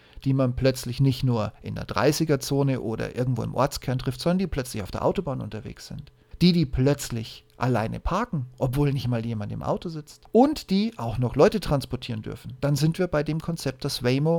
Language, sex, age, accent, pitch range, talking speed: German, male, 40-59, German, 125-155 Hz, 200 wpm